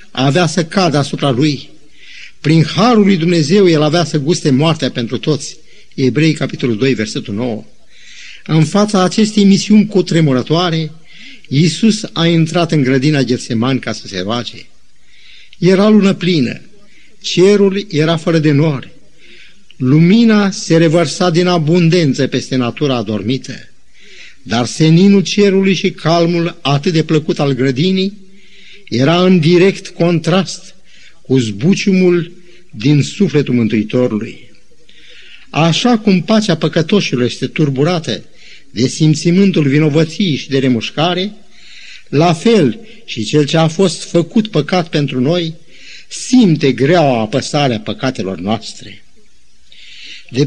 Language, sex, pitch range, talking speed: Romanian, male, 135-190 Hz, 120 wpm